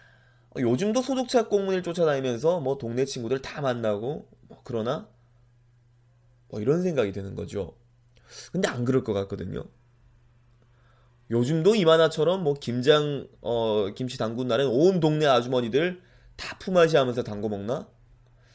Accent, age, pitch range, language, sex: native, 20-39, 120-160 Hz, Korean, male